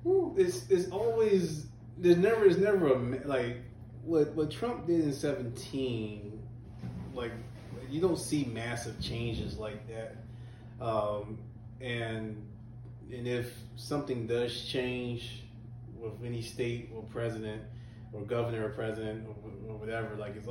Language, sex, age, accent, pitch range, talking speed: English, male, 20-39, American, 110-120 Hz, 130 wpm